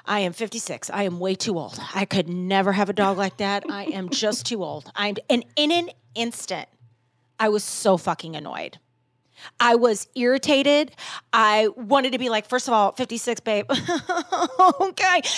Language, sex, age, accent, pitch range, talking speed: English, female, 30-49, American, 205-300 Hz, 170 wpm